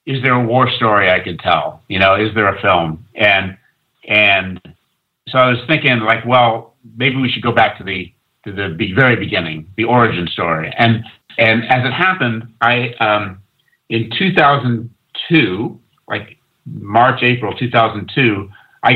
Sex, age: male, 50-69